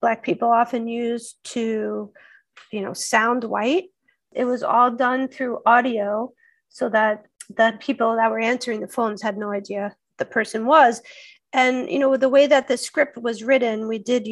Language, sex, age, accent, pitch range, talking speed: English, female, 40-59, American, 215-265 Hz, 175 wpm